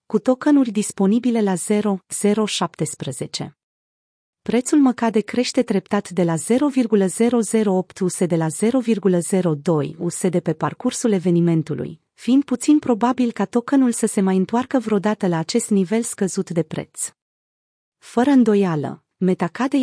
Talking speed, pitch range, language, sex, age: 120 wpm, 180-235 Hz, Romanian, female, 30-49